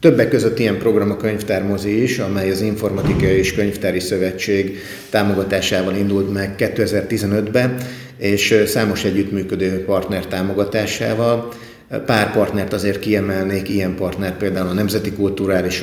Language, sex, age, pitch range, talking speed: Hungarian, male, 30-49, 95-110 Hz, 120 wpm